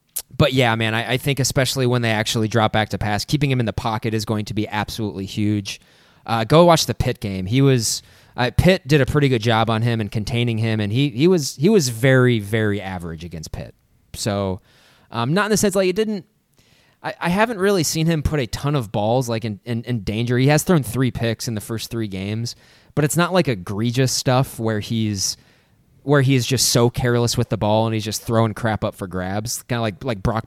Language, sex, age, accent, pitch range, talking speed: English, male, 20-39, American, 110-145 Hz, 235 wpm